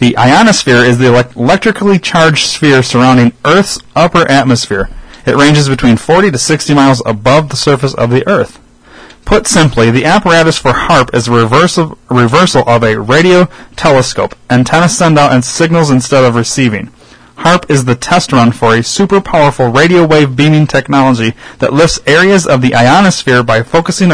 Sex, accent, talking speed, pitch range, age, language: male, American, 170 wpm, 115-150 Hz, 30-49, English